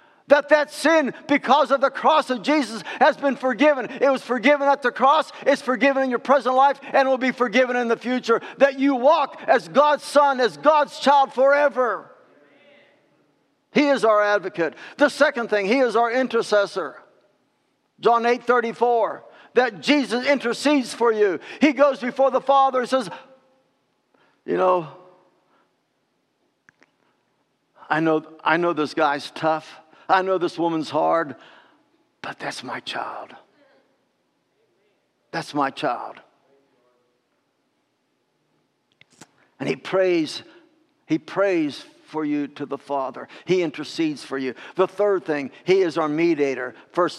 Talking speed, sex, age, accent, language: 140 wpm, male, 60-79, American, English